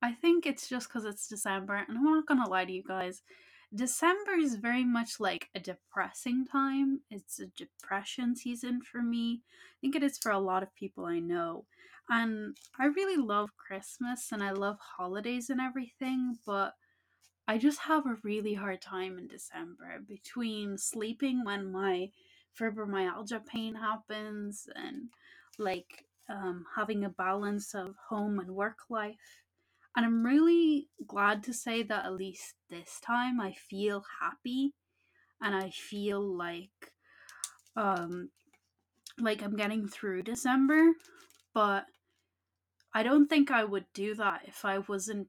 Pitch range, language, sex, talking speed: 195-255 Hz, English, female, 150 wpm